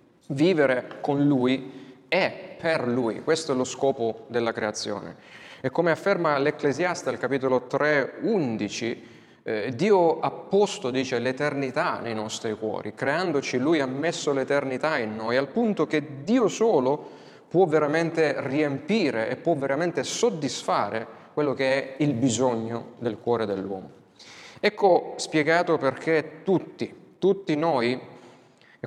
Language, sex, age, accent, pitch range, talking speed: Italian, male, 30-49, native, 125-160 Hz, 130 wpm